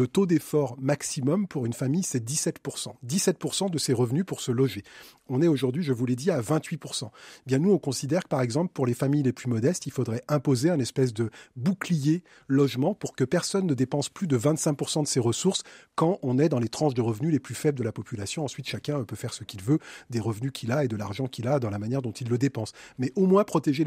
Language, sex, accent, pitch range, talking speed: French, male, French, 125-160 Hz, 250 wpm